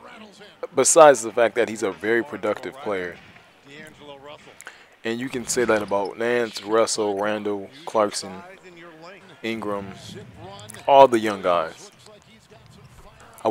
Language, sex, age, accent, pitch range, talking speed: English, male, 20-39, American, 100-120 Hz, 110 wpm